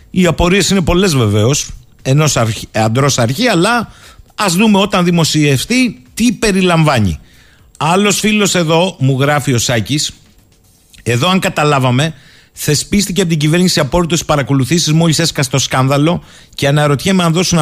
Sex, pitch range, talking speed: male, 130-175 Hz, 135 wpm